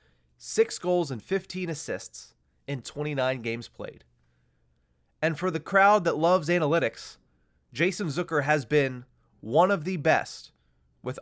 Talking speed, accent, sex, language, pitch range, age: 135 wpm, American, male, English, 115-175 Hz, 30-49